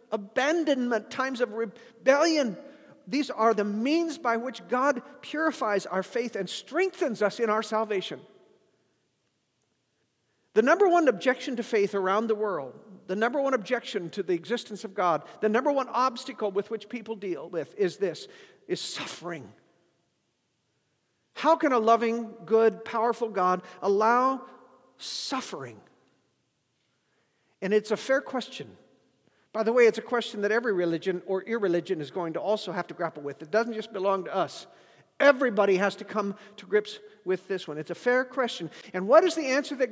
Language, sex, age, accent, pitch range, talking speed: English, male, 50-69, American, 200-260 Hz, 165 wpm